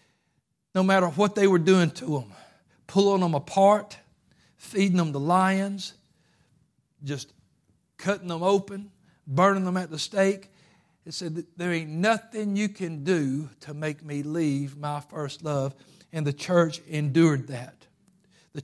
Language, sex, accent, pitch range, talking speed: English, male, American, 150-185 Hz, 150 wpm